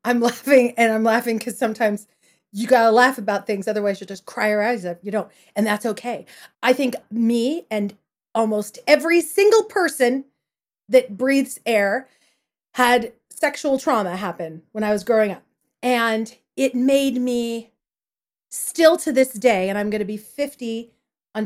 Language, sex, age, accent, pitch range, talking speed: English, female, 40-59, American, 220-275 Hz, 170 wpm